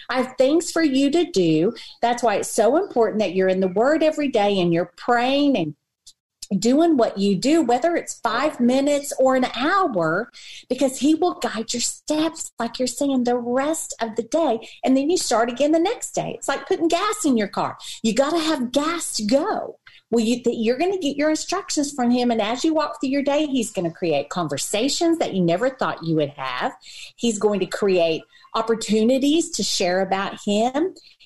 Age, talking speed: 40-59, 210 wpm